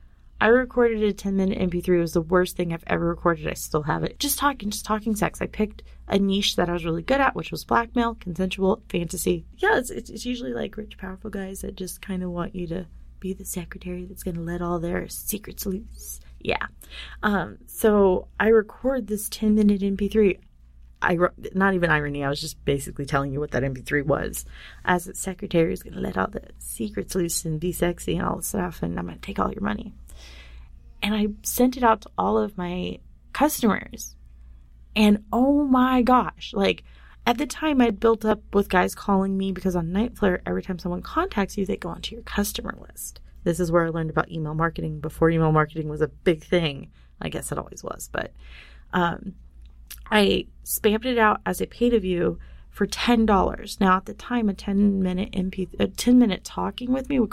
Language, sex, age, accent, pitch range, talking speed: English, female, 30-49, American, 165-215 Hz, 210 wpm